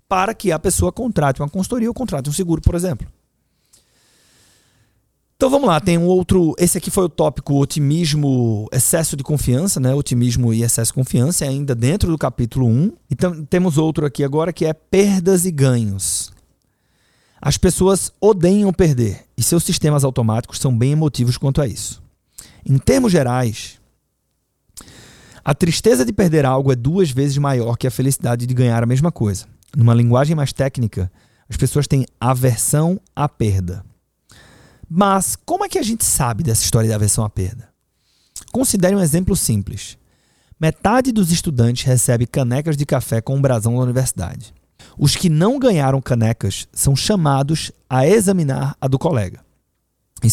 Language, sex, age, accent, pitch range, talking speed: Portuguese, male, 30-49, Brazilian, 120-170 Hz, 160 wpm